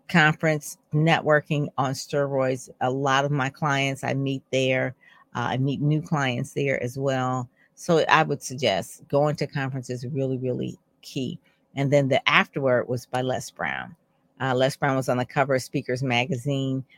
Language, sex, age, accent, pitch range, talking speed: English, female, 50-69, American, 130-155 Hz, 175 wpm